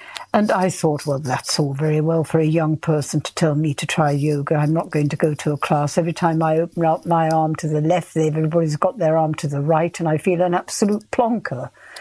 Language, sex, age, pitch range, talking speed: English, female, 60-79, 150-190 Hz, 245 wpm